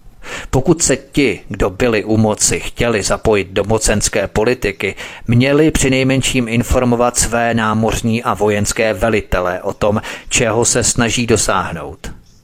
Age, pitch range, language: 40-59, 105-120 Hz, Czech